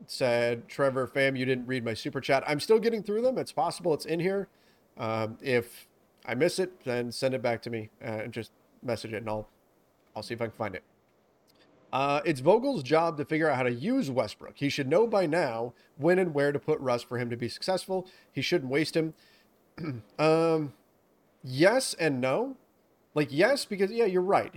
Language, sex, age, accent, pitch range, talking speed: English, male, 30-49, American, 125-160 Hz, 210 wpm